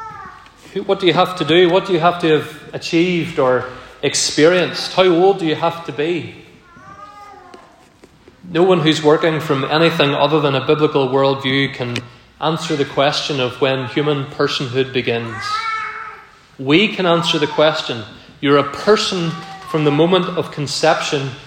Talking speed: 155 wpm